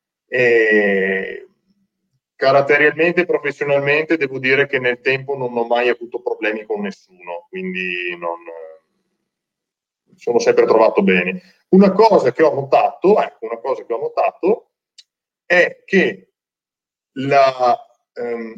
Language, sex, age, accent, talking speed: Italian, male, 40-59, native, 120 wpm